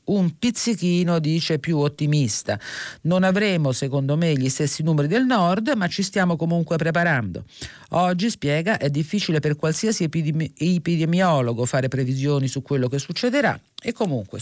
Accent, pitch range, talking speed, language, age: native, 135-180 Hz, 140 wpm, Italian, 40-59